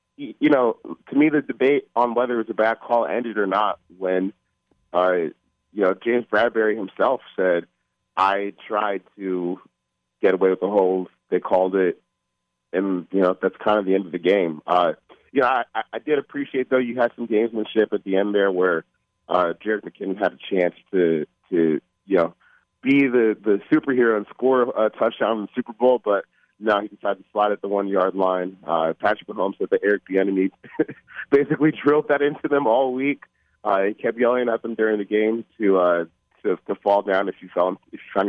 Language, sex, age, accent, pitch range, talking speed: English, male, 30-49, American, 90-120 Hz, 205 wpm